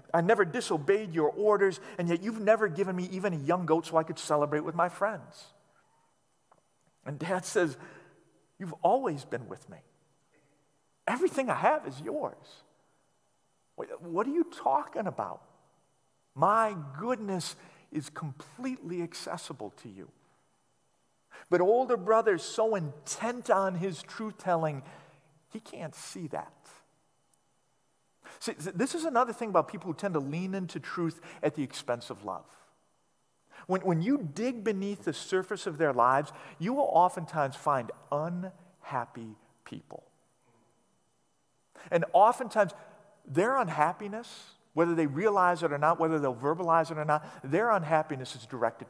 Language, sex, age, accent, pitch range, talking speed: English, male, 50-69, American, 150-210 Hz, 140 wpm